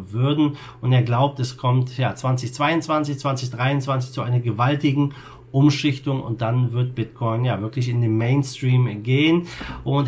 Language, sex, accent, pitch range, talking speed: German, male, German, 120-140 Hz, 145 wpm